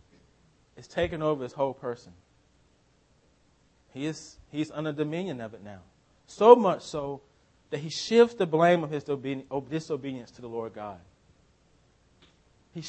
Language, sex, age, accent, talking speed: English, male, 30-49, American, 140 wpm